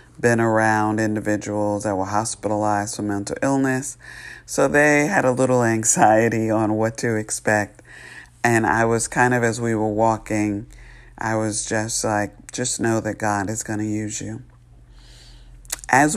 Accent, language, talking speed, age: American, English, 155 wpm, 50-69